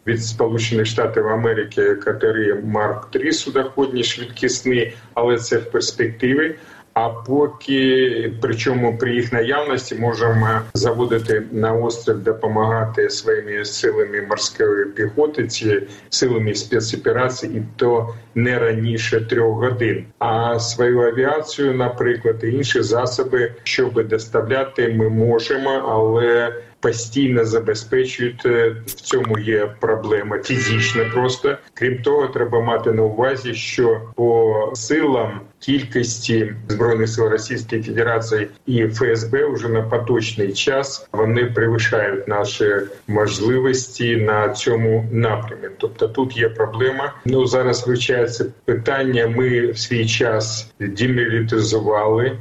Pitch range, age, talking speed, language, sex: 110-130 Hz, 40-59, 110 wpm, Ukrainian, male